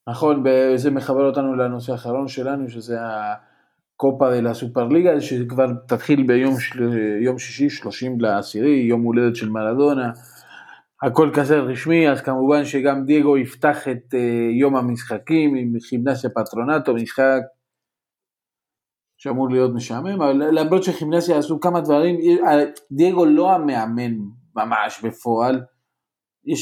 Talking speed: 115 wpm